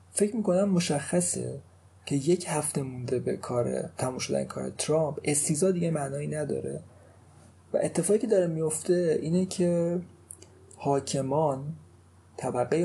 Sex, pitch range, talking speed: male, 125-155 Hz, 130 wpm